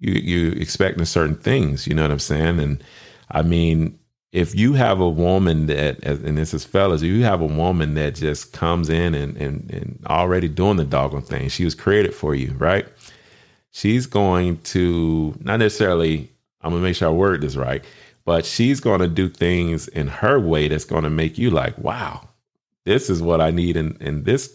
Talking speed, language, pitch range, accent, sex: 205 wpm, English, 75-90 Hz, American, male